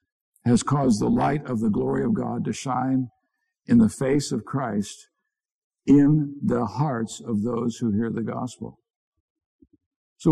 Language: English